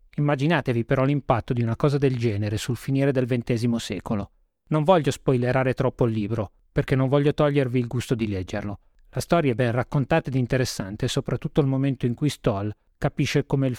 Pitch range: 120-145 Hz